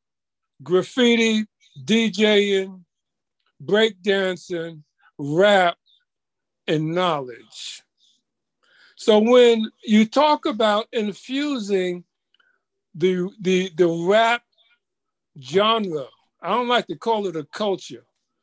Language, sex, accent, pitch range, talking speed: Russian, male, American, 185-245 Hz, 80 wpm